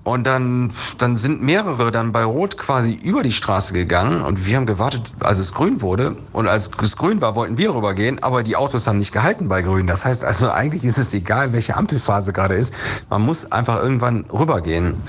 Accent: German